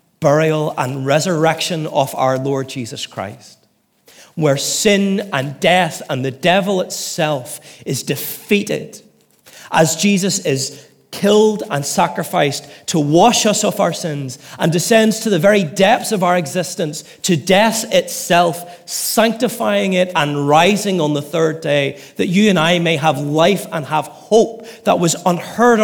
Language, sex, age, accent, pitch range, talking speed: English, male, 30-49, British, 150-205 Hz, 145 wpm